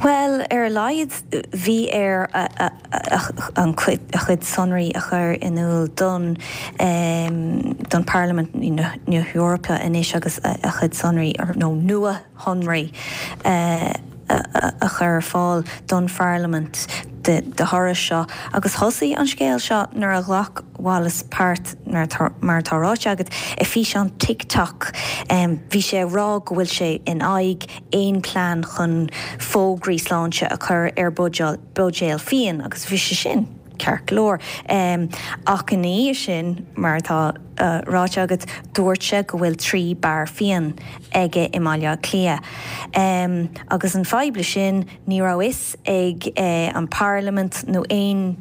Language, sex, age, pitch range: English, female, 20-39, 165-190 Hz